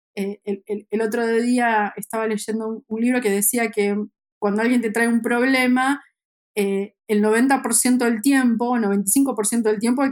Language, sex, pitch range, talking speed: Spanish, female, 205-240 Hz, 165 wpm